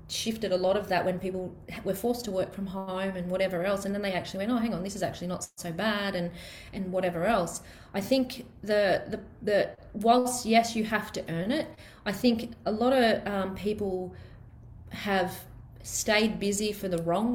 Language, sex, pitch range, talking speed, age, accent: English, female, 185-220 Hz, 205 wpm, 30-49, Australian